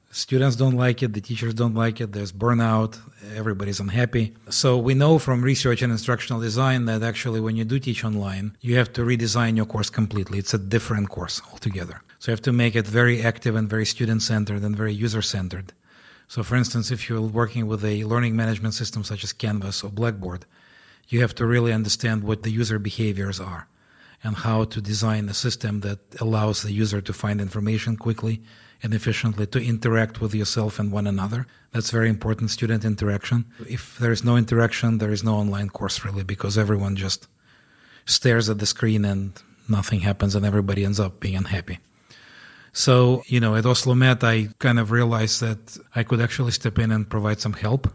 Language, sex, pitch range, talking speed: Czech, male, 105-120 Hz, 195 wpm